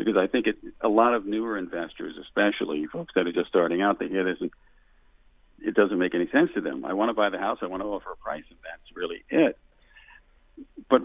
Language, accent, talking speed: English, American, 235 wpm